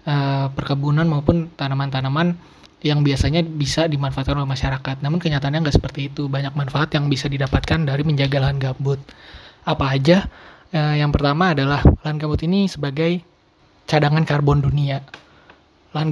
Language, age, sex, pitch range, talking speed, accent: Indonesian, 20-39, male, 140-155 Hz, 140 wpm, native